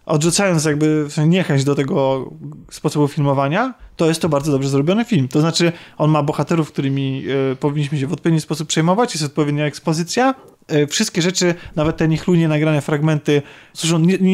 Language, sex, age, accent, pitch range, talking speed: Polish, male, 20-39, native, 150-180 Hz, 160 wpm